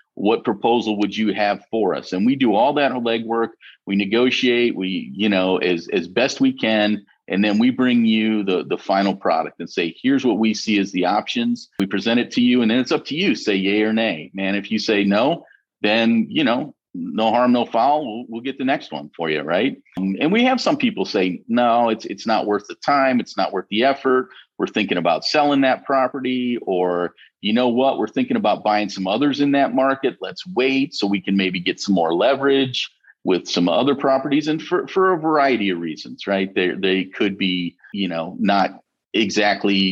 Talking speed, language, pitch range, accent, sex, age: 215 wpm, English, 100-135 Hz, American, male, 40-59